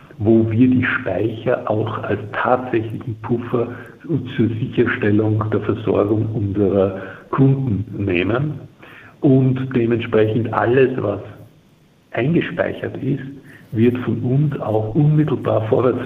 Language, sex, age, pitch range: German, male, 60-79, 105-125 Hz